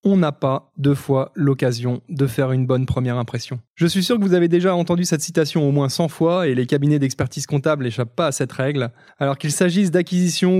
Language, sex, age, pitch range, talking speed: French, male, 20-39, 135-175 Hz, 225 wpm